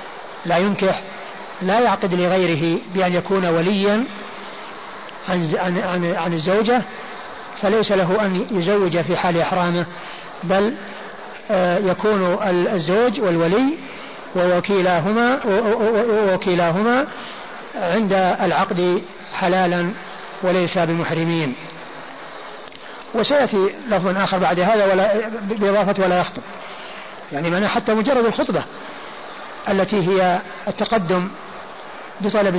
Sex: male